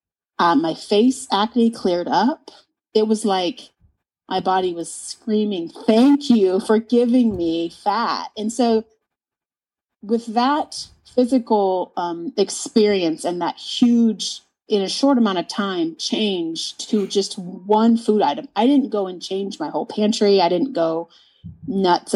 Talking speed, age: 145 wpm, 30-49